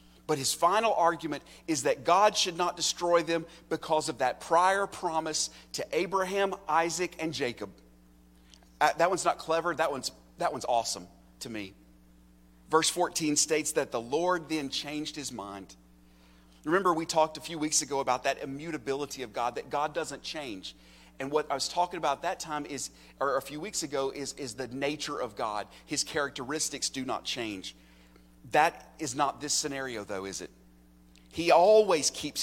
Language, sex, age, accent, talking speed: English, male, 40-59, American, 175 wpm